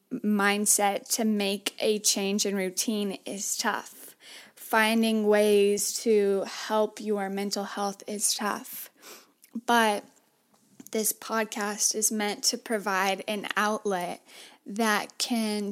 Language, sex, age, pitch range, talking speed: English, female, 10-29, 195-220 Hz, 110 wpm